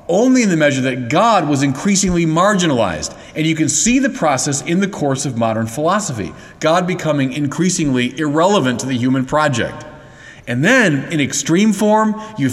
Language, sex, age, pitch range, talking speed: English, male, 40-59, 130-175 Hz, 170 wpm